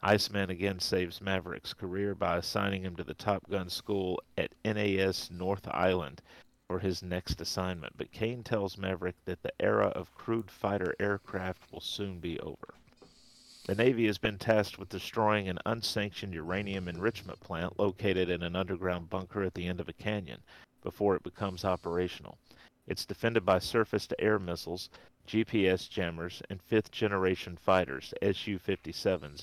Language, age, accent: English, 40-59, American